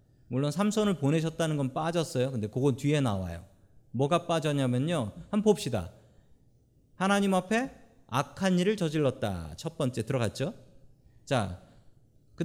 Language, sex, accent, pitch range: Korean, male, native, 120-200 Hz